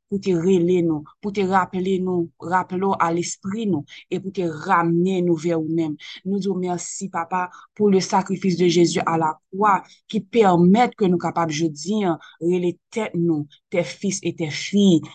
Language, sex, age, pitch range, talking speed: French, female, 20-39, 160-190 Hz, 180 wpm